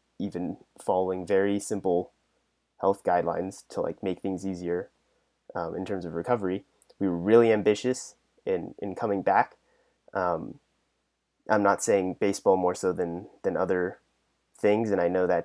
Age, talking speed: 30-49, 150 wpm